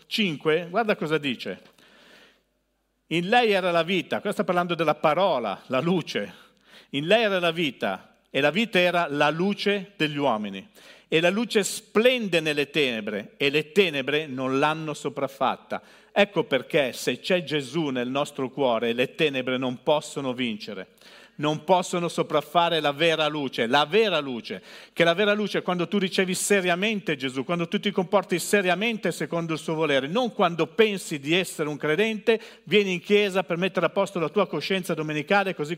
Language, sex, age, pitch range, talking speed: Italian, male, 50-69, 150-200 Hz, 170 wpm